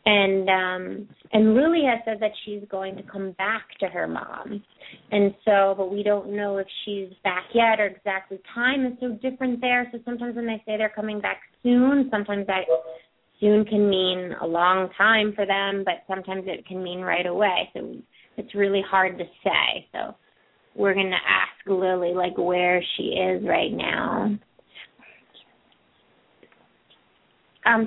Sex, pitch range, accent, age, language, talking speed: female, 190-225 Hz, American, 30-49, English, 165 wpm